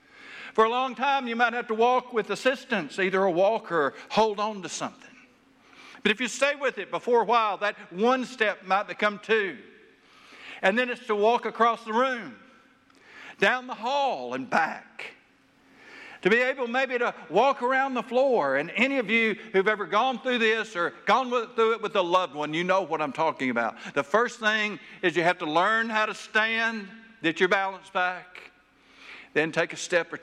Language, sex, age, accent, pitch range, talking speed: English, male, 60-79, American, 160-230 Hz, 195 wpm